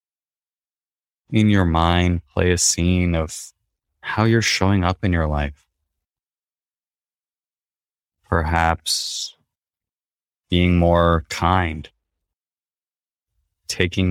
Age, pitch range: 20-39, 80-95 Hz